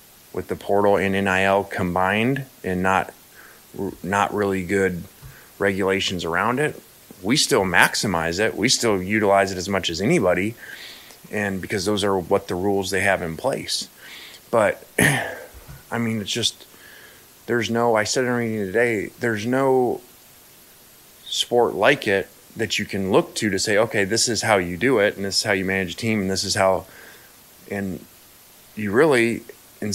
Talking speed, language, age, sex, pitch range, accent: 170 wpm, English, 30-49, male, 95-115 Hz, American